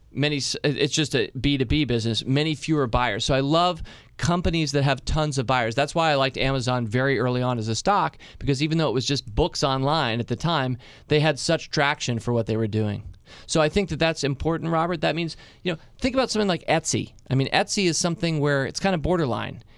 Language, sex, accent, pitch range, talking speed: English, male, American, 125-160 Hz, 230 wpm